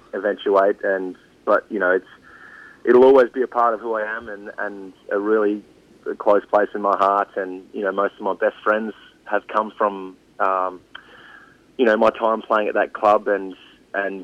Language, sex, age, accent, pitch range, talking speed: English, male, 20-39, Australian, 95-120 Hz, 195 wpm